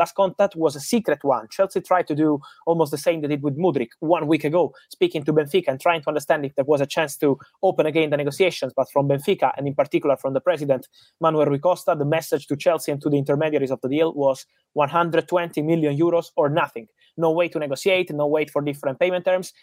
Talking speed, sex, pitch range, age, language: 230 wpm, male, 140-170 Hz, 20-39, English